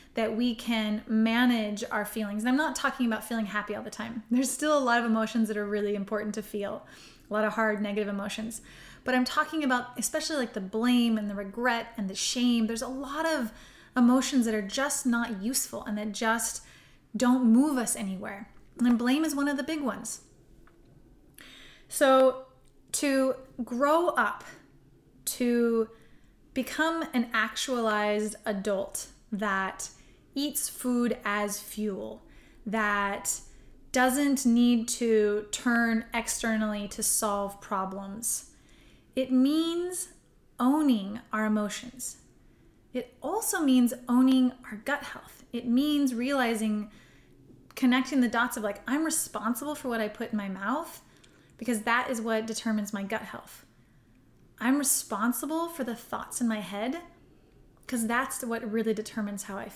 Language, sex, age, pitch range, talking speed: English, female, 20-39, 210-255 Hz, 150 wpm